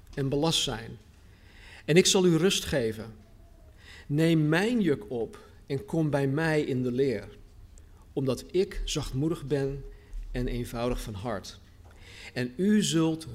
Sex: male